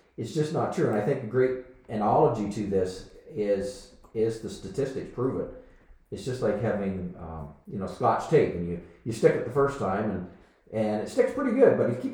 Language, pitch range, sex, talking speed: English, 95-125 Hz, male, 220 wpm